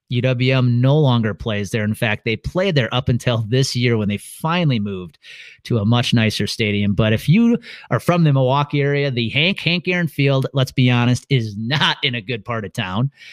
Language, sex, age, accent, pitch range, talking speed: English, male, 30-49, American, 115-155 Hz, 210 wpm